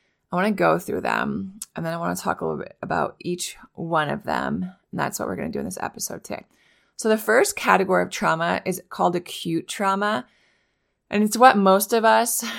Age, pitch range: 20-39, 155-190 Hz